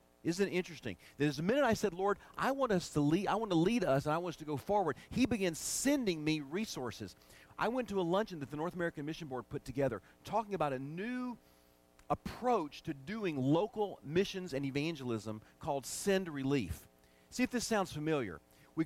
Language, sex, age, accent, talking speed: English, male, 40-59, American, 205 wpm